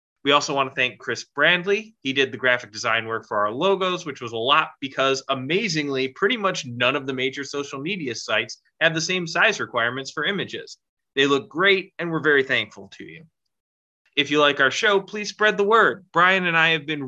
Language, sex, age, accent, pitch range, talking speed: English, male, 20-39, American, 125-160 Hz, 215 wpm